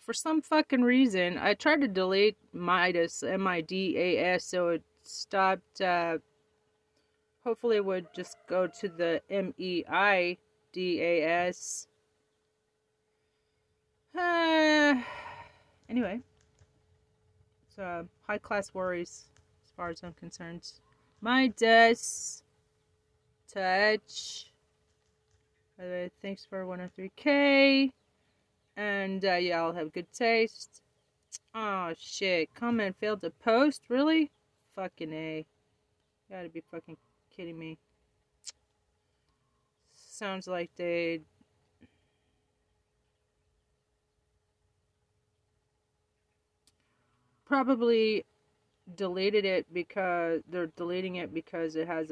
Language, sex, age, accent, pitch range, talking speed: English, female, 30-49, American, 165-210 Hz, 85 wpm